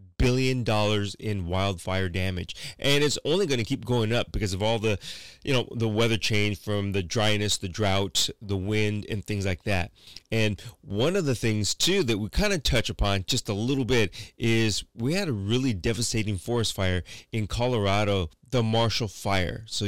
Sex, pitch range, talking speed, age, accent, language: male, 100-120 Hz, 185 wpm, 30-49, American, English